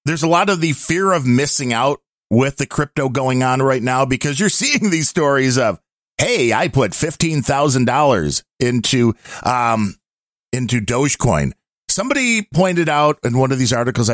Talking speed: 160 wpm